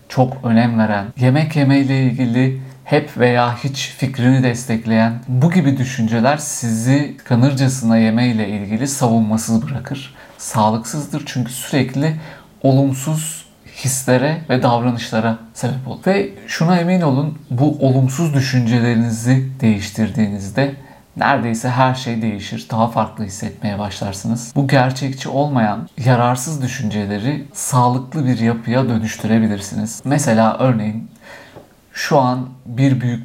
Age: 50-69